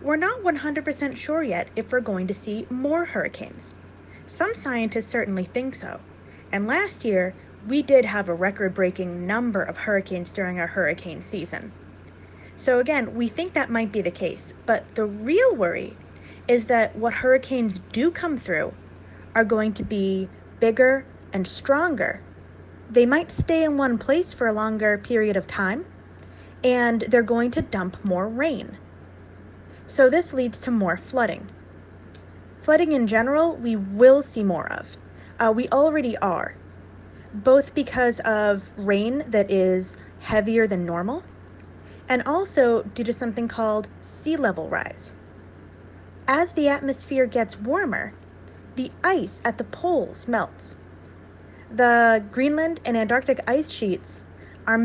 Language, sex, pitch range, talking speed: English, female, 195-265 Hz, 145 wpm